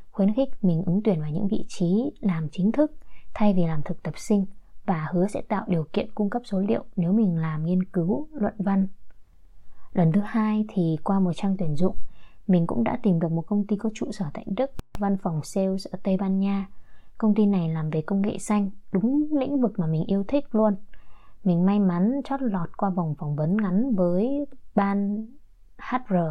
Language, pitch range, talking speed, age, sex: Vietnamese, 170-210 Hz, 210 wpm, 20-39, female